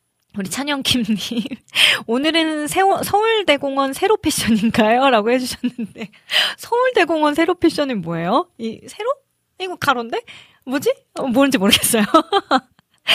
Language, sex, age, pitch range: Korean, female, 20-39, 200-275 Hz